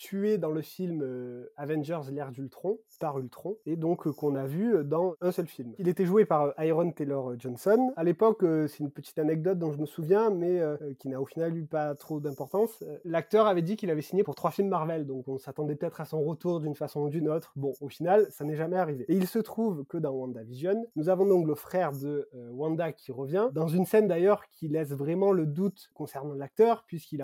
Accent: French